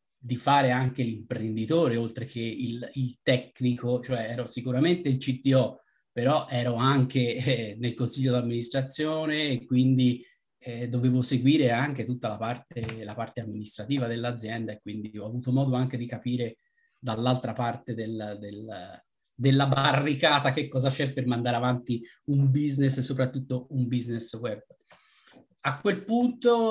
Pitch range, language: 120-145 Hz, Italian